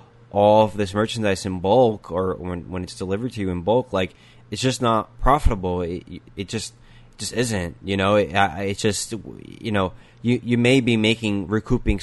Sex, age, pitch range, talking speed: male, 20-39, 95-115 Hz, 195 wpm